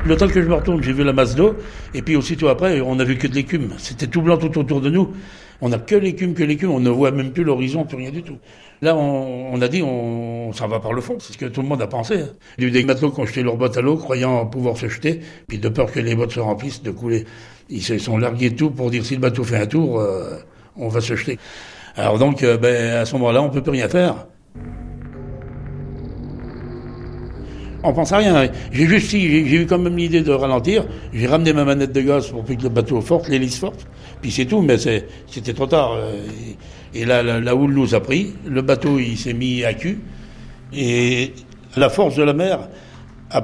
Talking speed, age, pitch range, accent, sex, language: 245 wpm, 60-79, 120-150 Hz, French, male, French